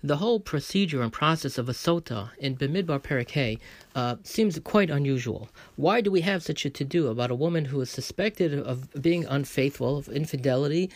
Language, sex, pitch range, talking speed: English, male, 135-180 Hz, 175 wpm